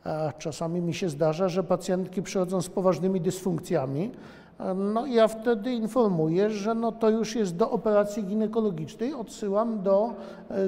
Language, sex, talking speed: Polish, male, 140 wpm